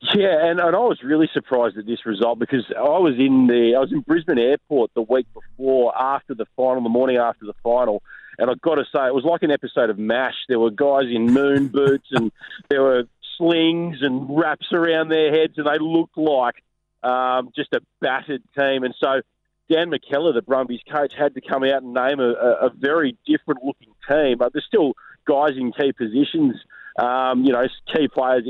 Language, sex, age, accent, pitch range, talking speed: English, male, 30-49, Australian, 120-150 Hz, 205 wpm